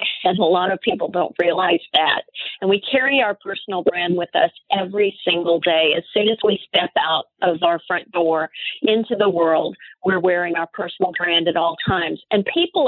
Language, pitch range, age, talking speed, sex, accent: English, 190-275 Hz, 40-59, 195 wpm, female, American